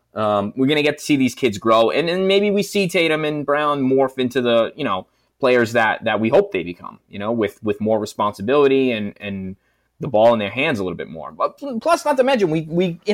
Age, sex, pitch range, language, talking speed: 20-39, male, 105-155 Hz, English, 250 wpm